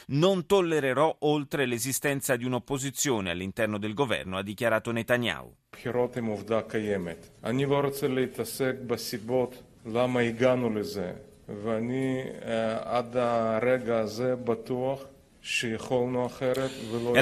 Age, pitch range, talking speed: 30-49, 105-130 Hz, 45 wpm